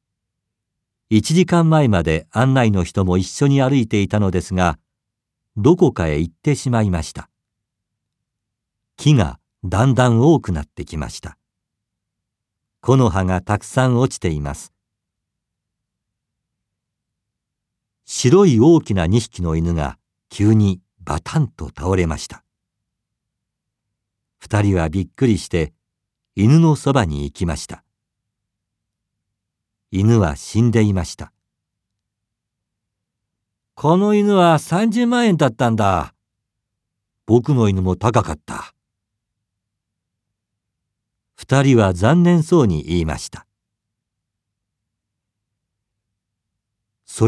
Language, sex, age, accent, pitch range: Japanese, male, 50-69, native, 100-125 Hz